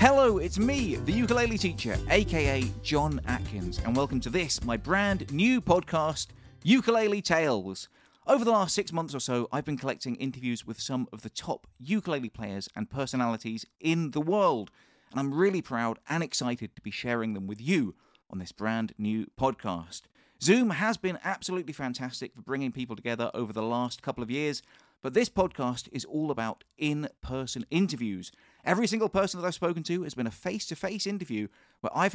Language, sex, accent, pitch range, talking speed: English, male, British, 115-165 Hz, 180 wpm